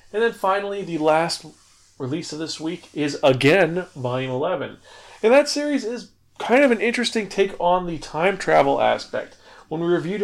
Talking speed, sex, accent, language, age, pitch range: 175 wpm, male, American, English, 30-49, 130-175 Hz